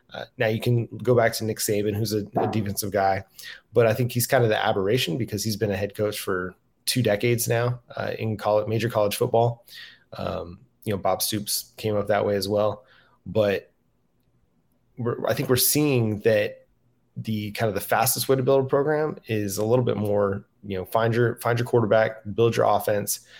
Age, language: 30-49, English